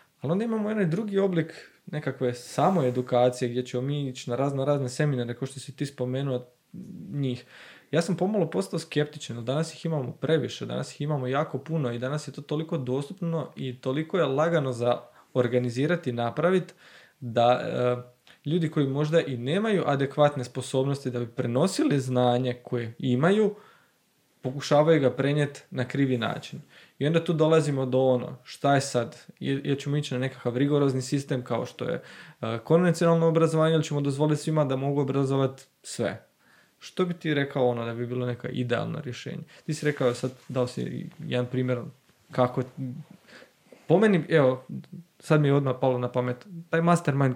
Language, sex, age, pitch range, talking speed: Croatian, male, 20-39, 125-160 Hz, 165 wpm